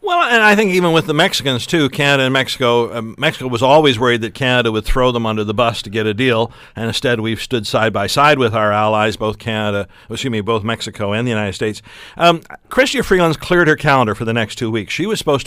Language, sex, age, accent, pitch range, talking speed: English, male, 50-69, American, 120-150 Hz, 245 wpm